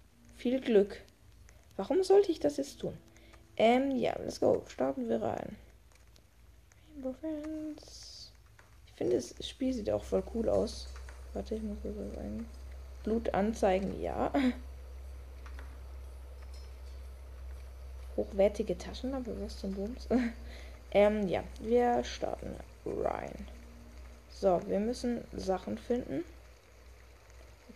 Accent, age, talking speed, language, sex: German, 20-39, 110 wpm, German, female